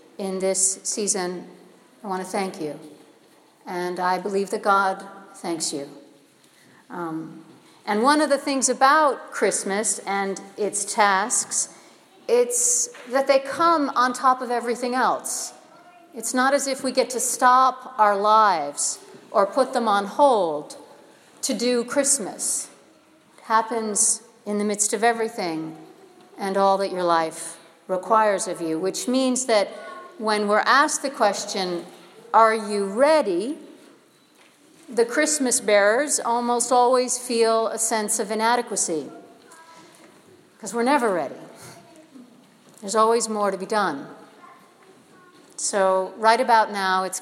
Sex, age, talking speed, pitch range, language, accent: female, 50-69, 130 wpm, 195-255 Hz, English, American